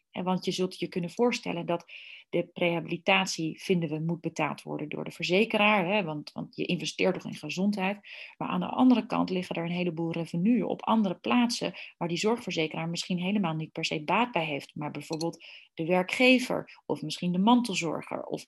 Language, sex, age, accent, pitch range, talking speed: Dutch, female, 30-49, Dutch, 170-210 Hz, 190 wpm